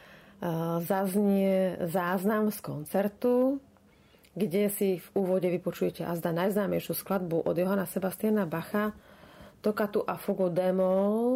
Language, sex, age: Slovak, female, 30-49